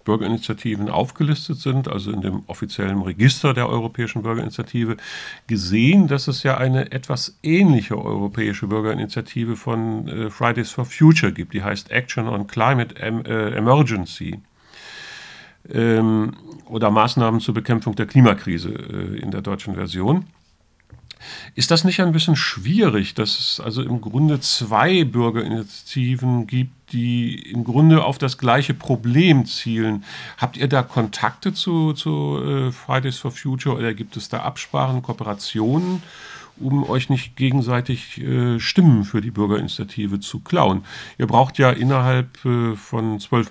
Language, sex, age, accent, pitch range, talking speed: English, male, 50-69, German, 110-140 Hz, 130 wpm